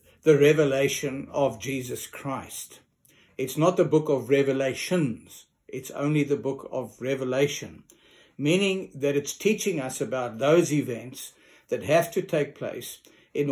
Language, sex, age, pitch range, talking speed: English, male, 60-79, 135-160 Hz, 140 wpm